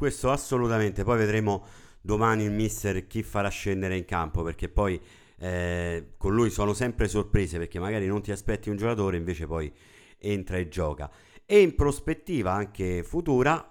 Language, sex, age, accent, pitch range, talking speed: Italian, male, 50-69, native, 90-120 Hz, 160 wpm